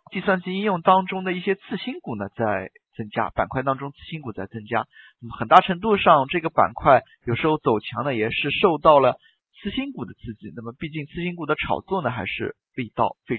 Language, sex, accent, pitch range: Chinese, male, native, 120-180 Hz